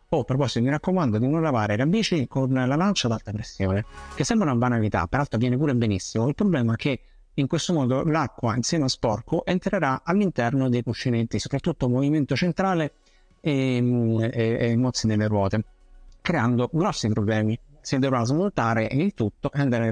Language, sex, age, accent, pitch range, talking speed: Italian, male, 50-69, native, 115-150 Hz, 170 wpm